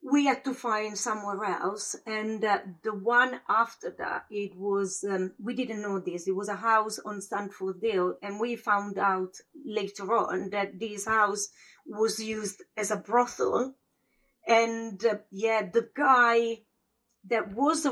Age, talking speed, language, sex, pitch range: 30-49, 155 wpm, English, female, 195-230 Hz